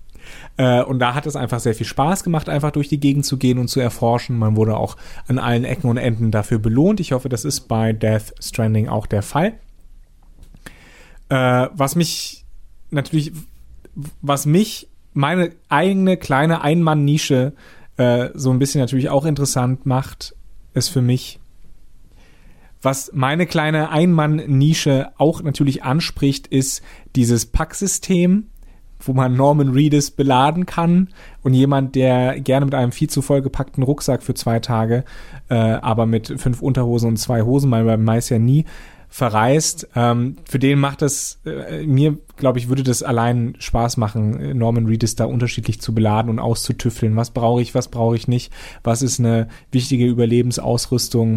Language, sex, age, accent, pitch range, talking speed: German, male, 30-49, German, 115-145 Hz, 160 wpm